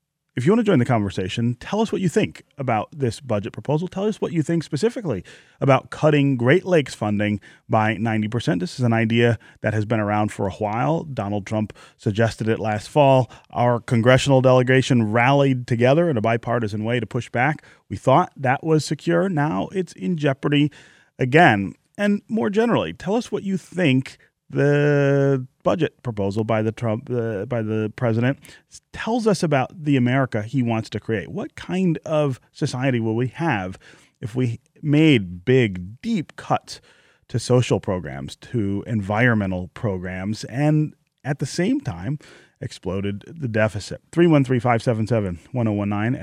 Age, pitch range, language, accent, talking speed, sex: 30-49, 110-150 Hz, English, American, 160 wpm, male